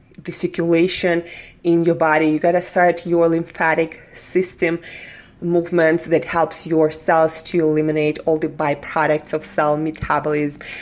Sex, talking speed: female, 140 wpm